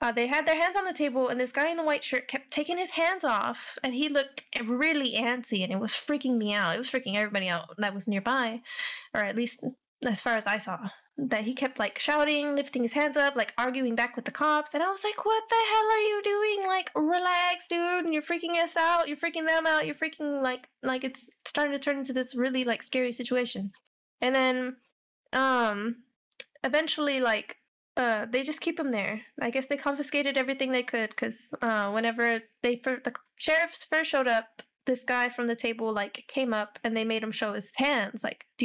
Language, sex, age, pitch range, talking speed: English, female, 10-29, 235-295 Hz, 220 wpm